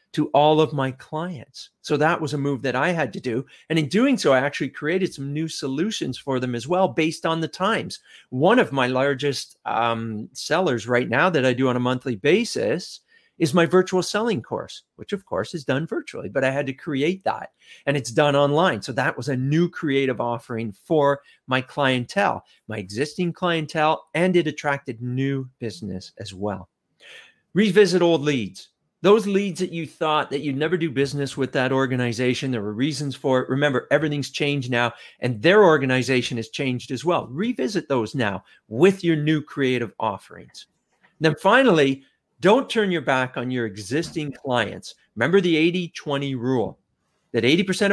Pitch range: 130-175 Hz